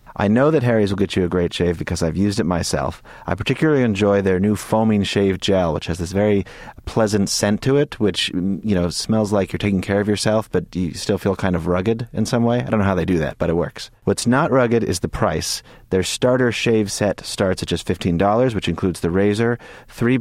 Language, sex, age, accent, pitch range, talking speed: English, male, 30-49, American, 90-115 Hz, 240 wpm